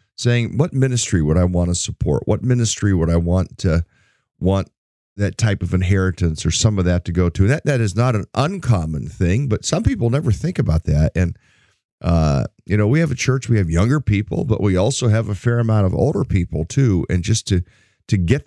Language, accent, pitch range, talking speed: English, American, 85-110 Hz, 225 wpm